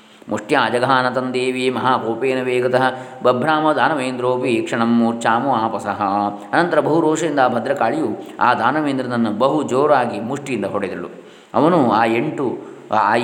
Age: 20-39